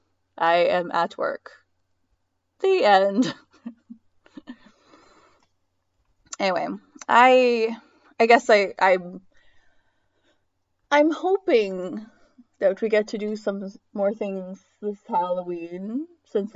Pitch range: 185-270 Hz